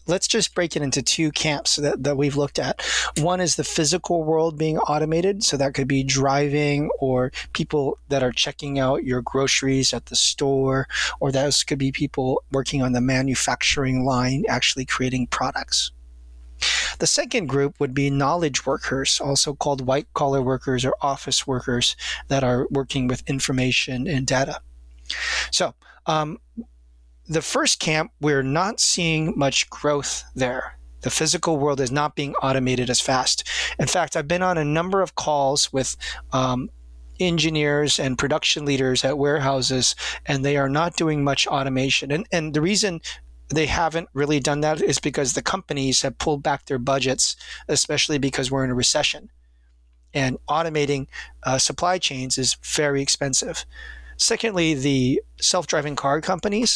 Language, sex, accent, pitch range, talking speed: English, male, American, 130-155 Hz, 160 wpm